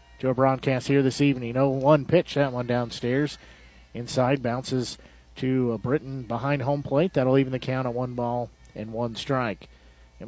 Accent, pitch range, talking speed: American, 105-140 Hz, 180 wpm